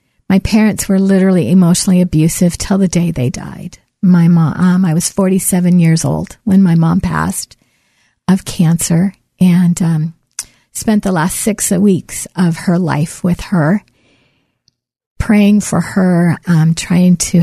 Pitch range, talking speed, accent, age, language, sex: 175-195 Hz, 150 wpm, American, 50-69, English, female